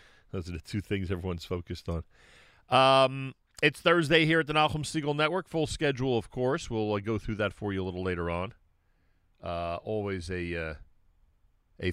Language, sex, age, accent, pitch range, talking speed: English, male, 40-59, American, 90-125 Hz, 185 wpm